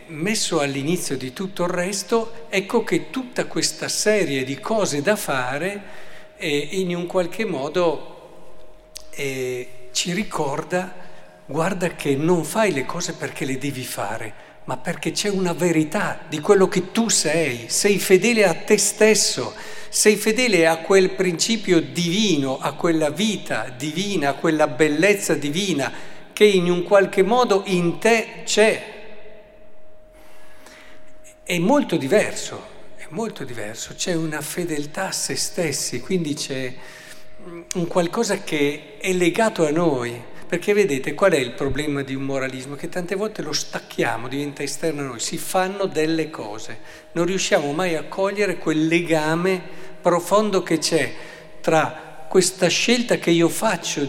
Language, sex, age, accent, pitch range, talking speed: Italian, male, 50-69, native, 145-200 Hz, 145 wpm